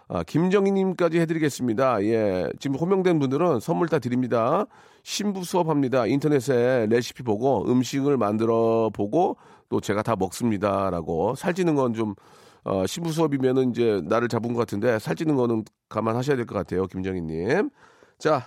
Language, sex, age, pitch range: Korean, male, 40-59, 100-150 Hz